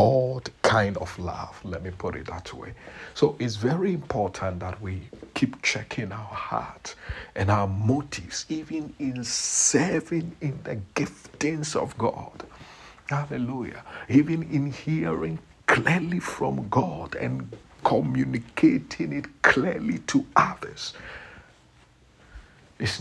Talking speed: 110 wpm